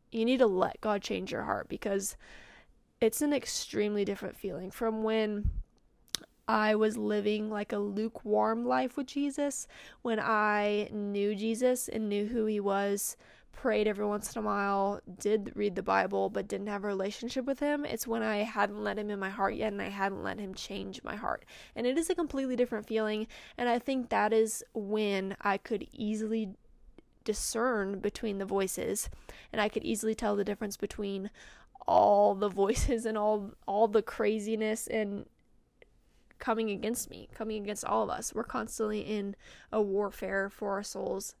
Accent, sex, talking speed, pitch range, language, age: American, female, 175 wpm, 205-225 Hz, English, 20-39